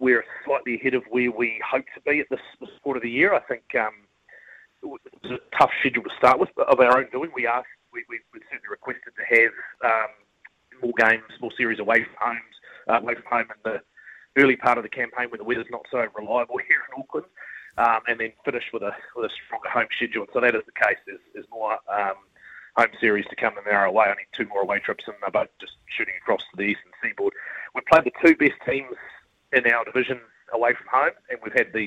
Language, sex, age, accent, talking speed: English, male, 30-49, Australian, 235 wpm